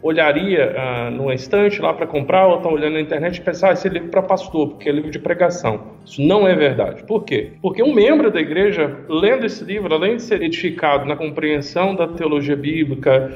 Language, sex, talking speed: Portuguese, male, 215 wpm